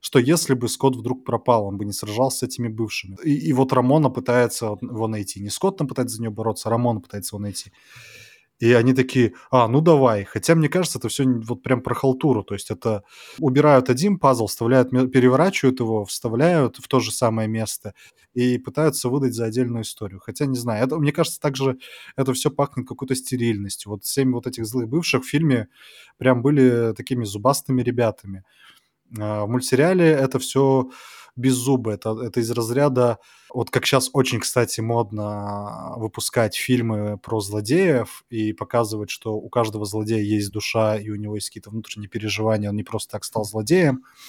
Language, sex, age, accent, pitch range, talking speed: Russian, male, 20-39, native, 110-130 Hz, 180 wpm